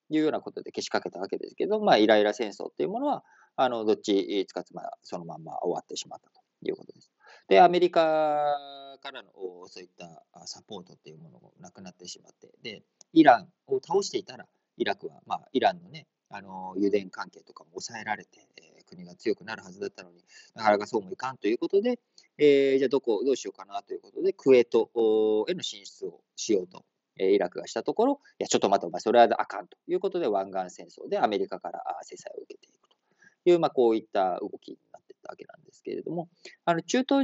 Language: Japanese